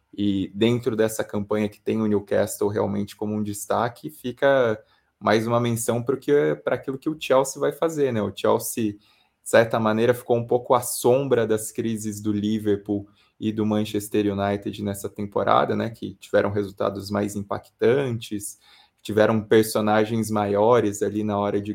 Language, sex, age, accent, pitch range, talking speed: Portuguese, male, 20-39, Brazilian, 105-120 Hz, 155 wpm